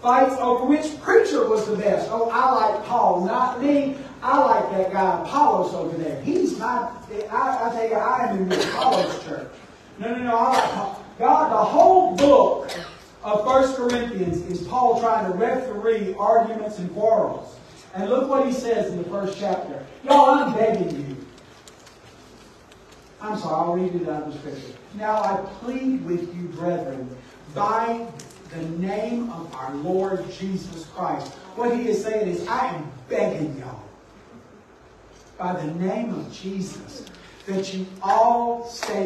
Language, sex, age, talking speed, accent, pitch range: English, male, 40-59, 160 wpm, American, 190-285 Hz